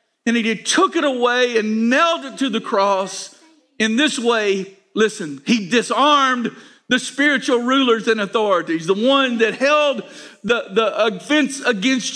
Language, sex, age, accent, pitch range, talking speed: English, male, 50-69, American, 215-270 Hz, 150 wpm